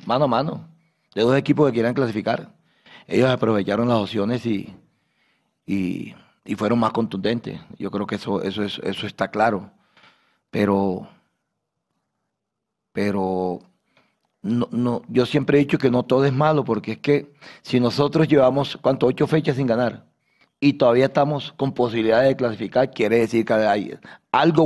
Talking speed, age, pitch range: 155 wpm, 40-59, 115-150 Hz